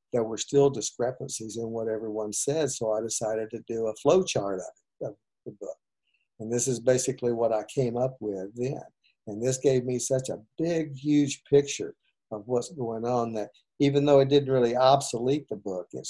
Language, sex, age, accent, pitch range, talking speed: English, male, 50-69, American, 115-135 Hz, 200 wpm